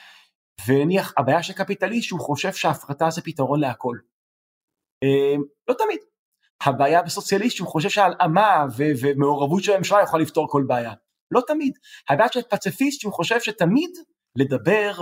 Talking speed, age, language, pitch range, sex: 135 wpm, 30-49, Hebrew, 145-210 Hz, male